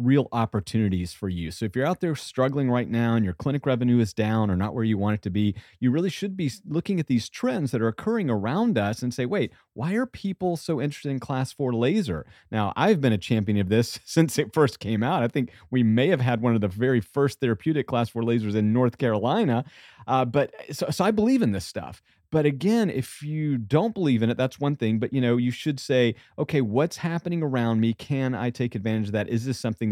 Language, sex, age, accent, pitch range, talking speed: English, male, 30-49, American, 110-145 Hz, 245 wpm